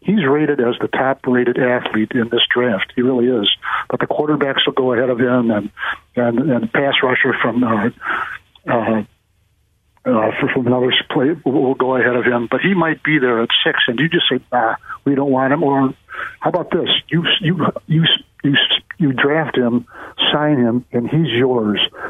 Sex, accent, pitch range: male, American, 120-135 Hz